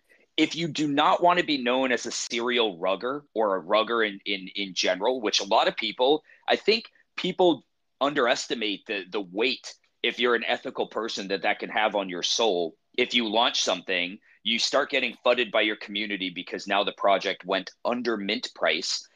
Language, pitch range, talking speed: English, 105-170 Hz, 195 wpm